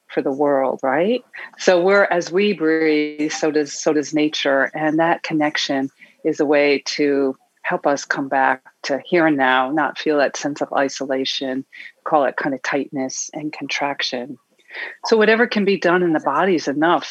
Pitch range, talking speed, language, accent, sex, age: 145-180 Hz, 180 wpm, English, American, female, 40-59